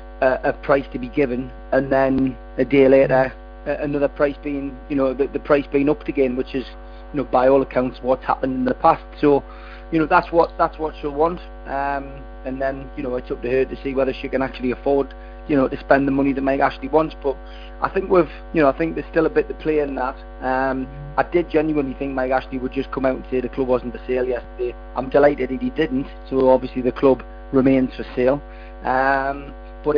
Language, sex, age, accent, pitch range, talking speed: English, male, 30-49, British, 125-140 Hz, 230 wpm